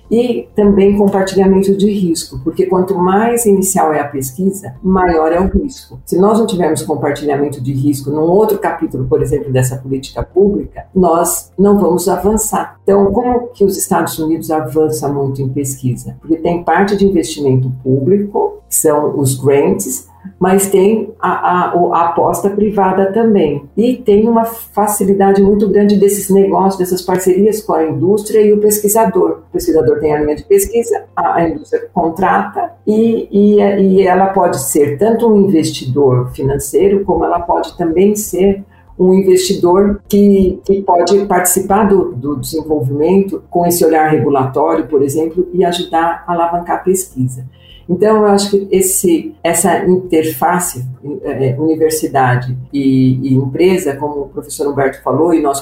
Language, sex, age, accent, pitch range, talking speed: Portuguese, female, 50-69, Brazilian, 155-200 Hz, 155 wpm